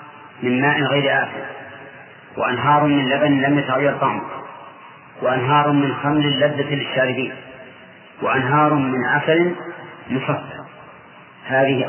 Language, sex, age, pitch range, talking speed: English, male, 40-59, 130-155 Hz, 100 wpm